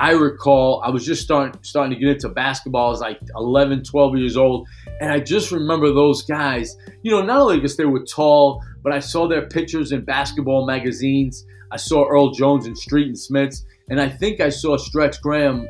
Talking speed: 205 wpm